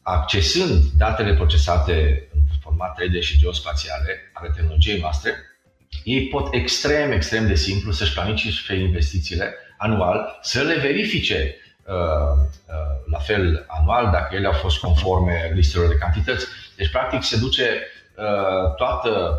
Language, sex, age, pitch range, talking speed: Romanian, male, 30-49, 75-100 Hz, 125 wpm